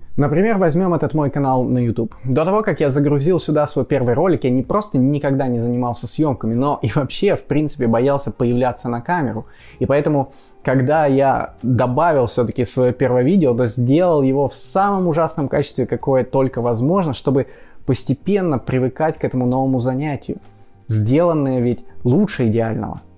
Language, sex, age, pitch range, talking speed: Russian, male, 20-39, 125-165 Hz, 160 wpm